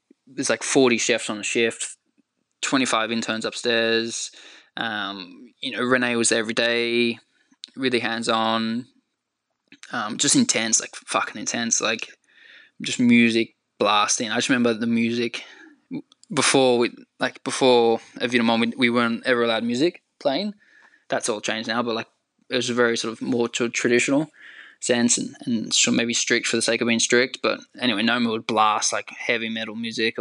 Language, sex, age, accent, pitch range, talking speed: English, male, 10-29, Australian, 115-140 Hz, 165 wpm